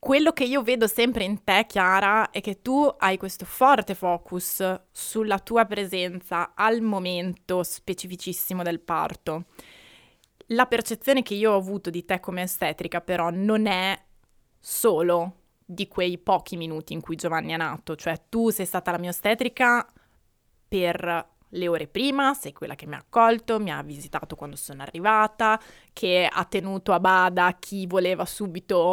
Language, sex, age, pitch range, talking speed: Italian, female, 20-39, 180-225 Hz, 160 wpm